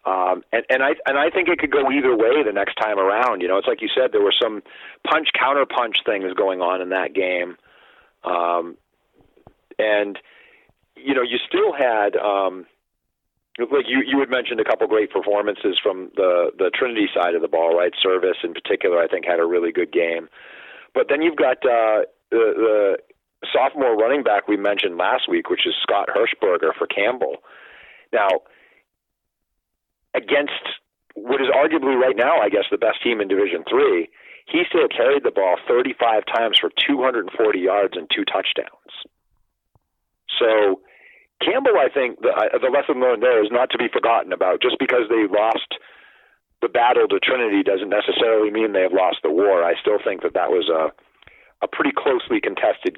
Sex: male